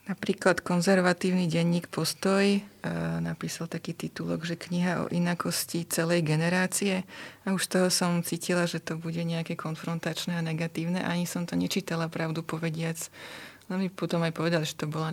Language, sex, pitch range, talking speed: Slovak, female, 155-170 Hz, 155 wpm